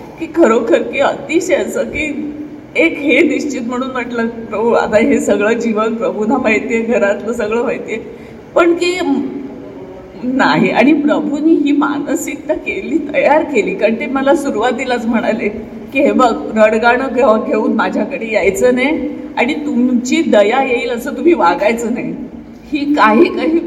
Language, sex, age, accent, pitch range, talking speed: Marathi, female, 50-69, native, 245-300 Hz, 140 wpm